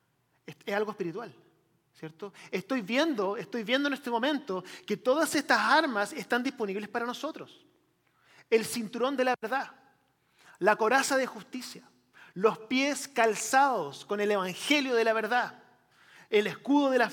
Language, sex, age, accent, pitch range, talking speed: English, male, 30-49, Argentinian, 195-265 Hz, 145 wpm